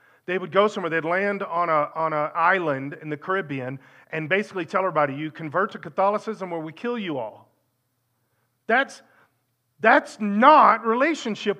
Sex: male